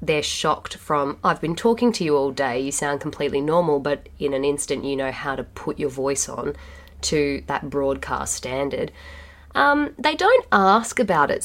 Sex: female